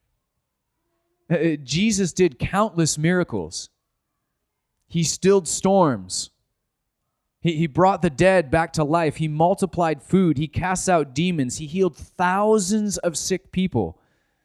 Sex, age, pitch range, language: male, 30-49, 150-185 Hz, English